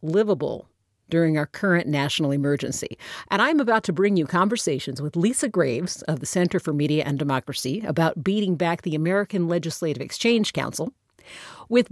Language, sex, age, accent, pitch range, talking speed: English, female, 50-69, American, 150-215 Hz, 160 wpm